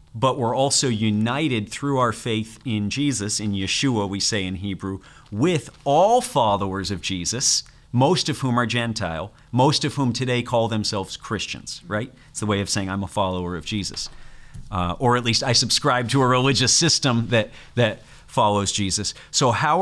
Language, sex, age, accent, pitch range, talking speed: English, male, 40-59, American, 105-135 Hz, 180 wpm